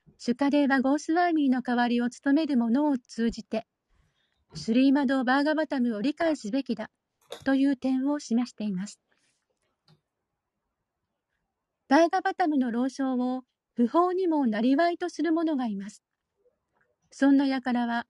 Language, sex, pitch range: Japanese, female, 240-300 Hz